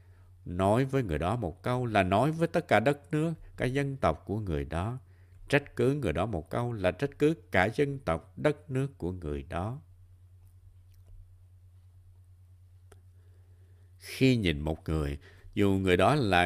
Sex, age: male, 60-79